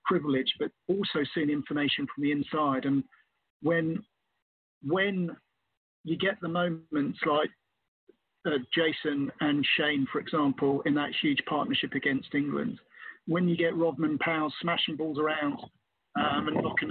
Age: 40-59